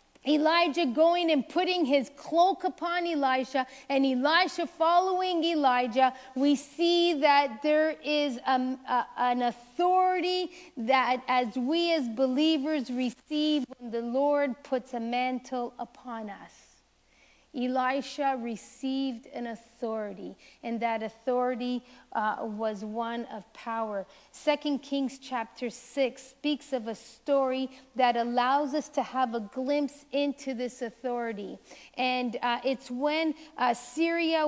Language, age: English, 40-59